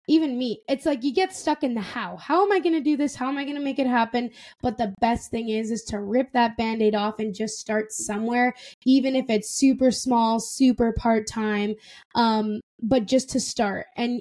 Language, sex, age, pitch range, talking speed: English, female, 10-29, 220-270 Hz, 230 wpm